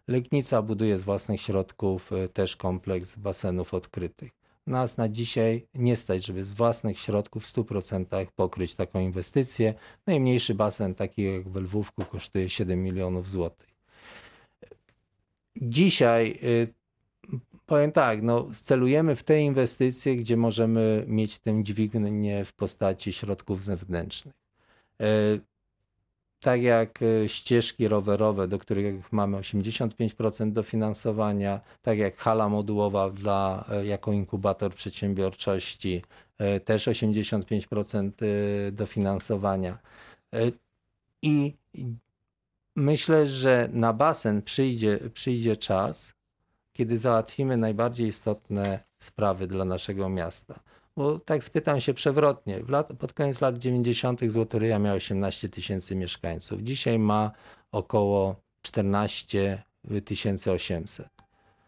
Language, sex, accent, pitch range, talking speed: Polish, male, native, 100-120 Hz, 105 wpm